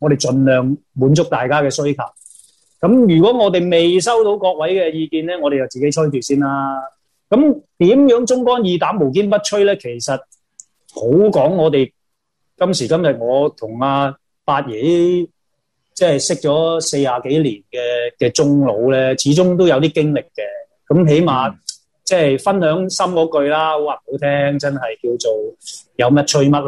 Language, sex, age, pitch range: Chinese, male, 30-49, 140-185 Hz